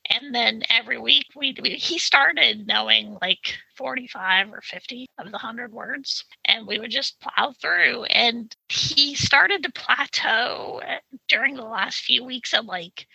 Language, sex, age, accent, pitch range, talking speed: English, female, 30-49, American, 230-345 Hz, 155 wpm